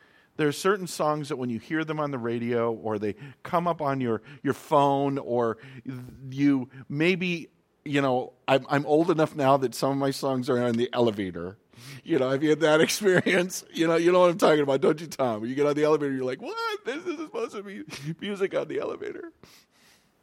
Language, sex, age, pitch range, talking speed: English, male, 50-69, 125-150 Hz, 220 wpm